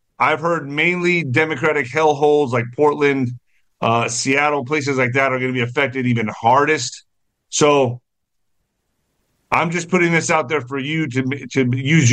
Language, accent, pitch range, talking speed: English, American, 125-155 Hz, 160 wpm